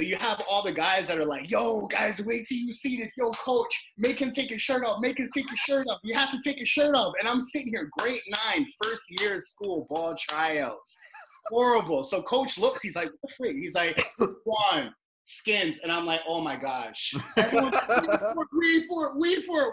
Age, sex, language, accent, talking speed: 20-39, male, English, American, 220 wpm